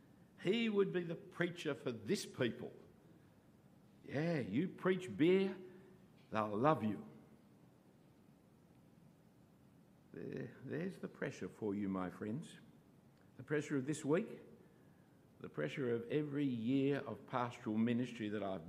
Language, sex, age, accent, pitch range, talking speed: English, male, 60-79, Australian, 110-175 Hz, 120 wpm